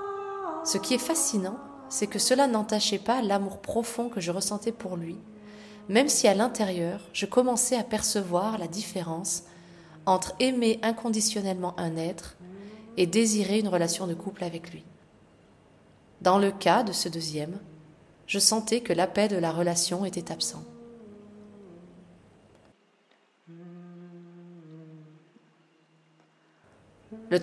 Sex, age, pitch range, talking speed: female, 20-39, 175-220 Hz, 125 wpm